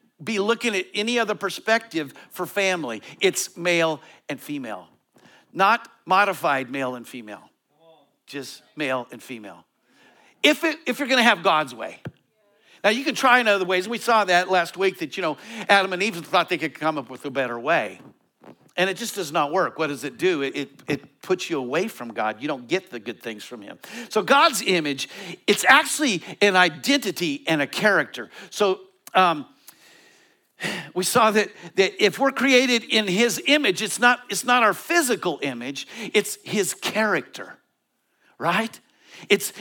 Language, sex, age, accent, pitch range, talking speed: English, male, 50-69, American, 150-230 Hz, 175 wpm